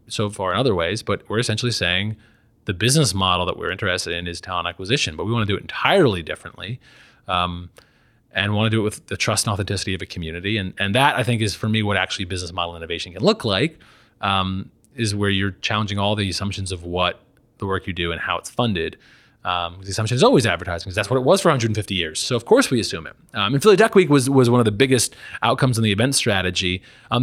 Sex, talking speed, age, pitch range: male, 245 wpm, 30-49, 95-120 Hz